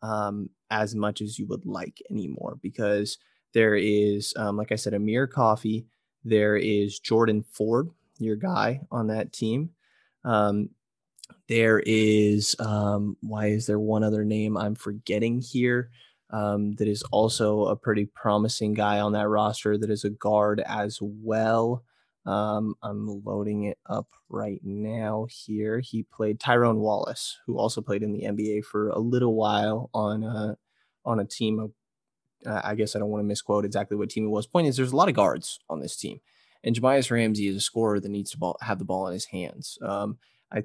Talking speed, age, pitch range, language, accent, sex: 185 wpm, 20-39, 105-115 Hz, English, American, male